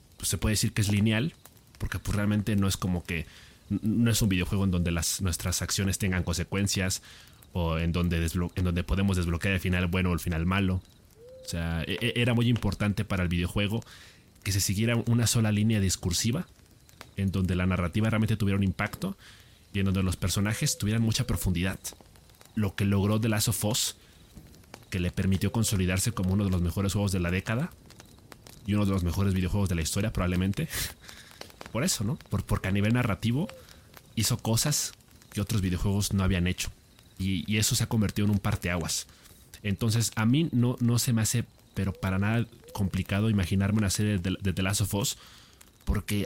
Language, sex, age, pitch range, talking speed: Spanish, male, 30-49, 95-115 Hz, 195 wpm